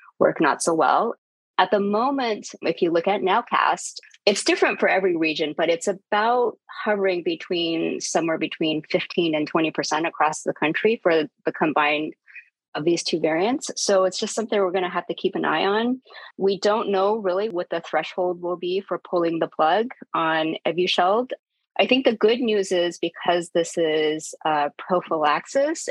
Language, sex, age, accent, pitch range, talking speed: English, female, 30-49, American, 155-195 Hz, 180 wpm